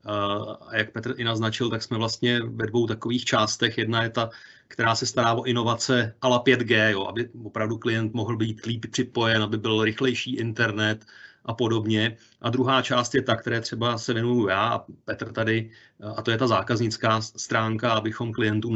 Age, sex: 30-49, male